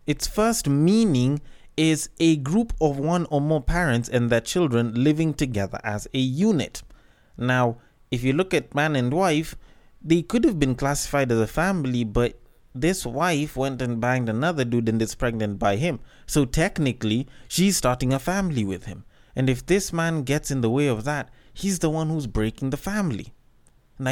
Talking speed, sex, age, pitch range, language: 185 wpm, male, 20-39, 120-155 Hz, English